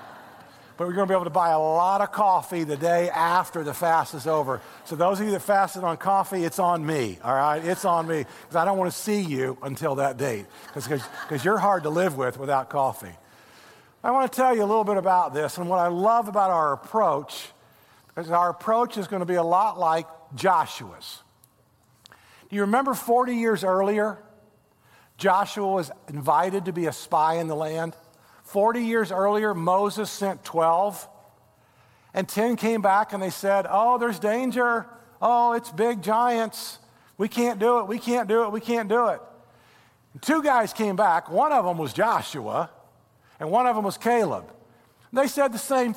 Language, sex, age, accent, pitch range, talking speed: English, male, 50-69, American, 165-230 Hz, 195 wpm